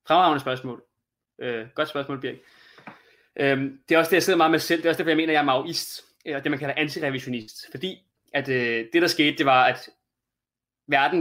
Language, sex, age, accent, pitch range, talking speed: Danish, male, 20-39, native, 130-160 Hz, 220 wpm